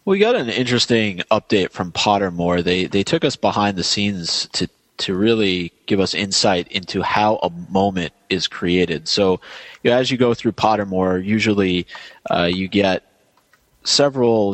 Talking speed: 160 wpm